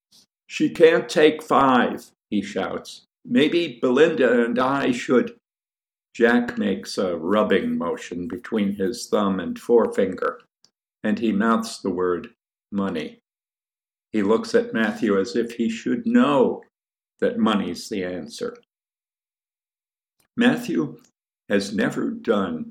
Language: English